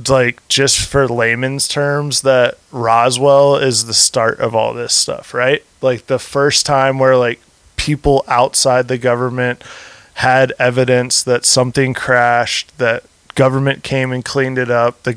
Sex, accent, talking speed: male, American, 150 wpm